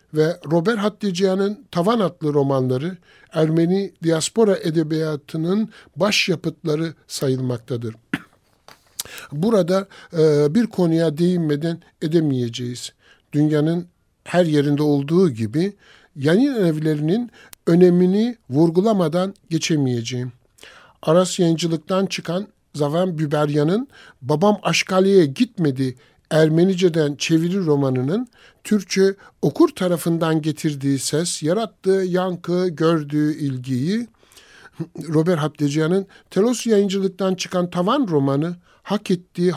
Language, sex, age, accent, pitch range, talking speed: Turkish, male, 60-79, native, 150-185 Hz, 85 wpm